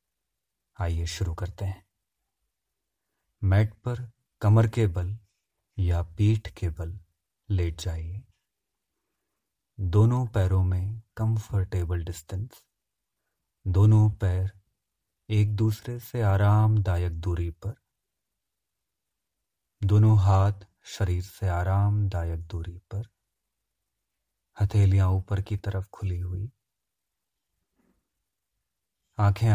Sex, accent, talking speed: male, native, 85 wpm